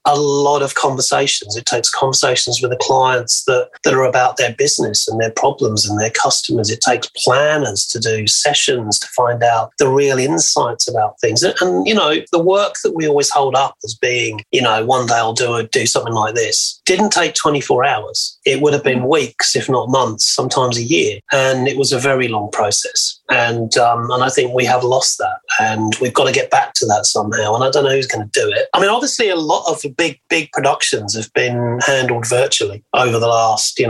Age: 30-49